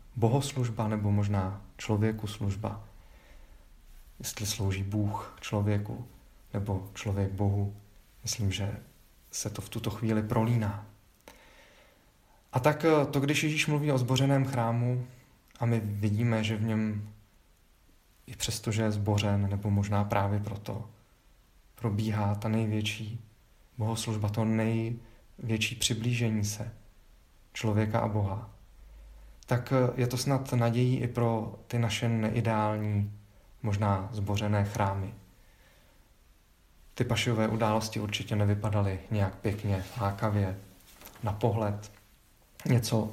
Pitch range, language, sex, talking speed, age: 100-115 Hz, Czech, male, 110 wpm, 40-59